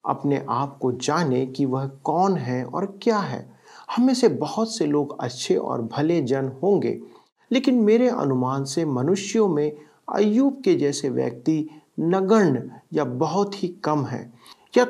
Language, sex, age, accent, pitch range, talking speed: Hindi, male, 40-59, native, 135-215 Hz, 155 wpm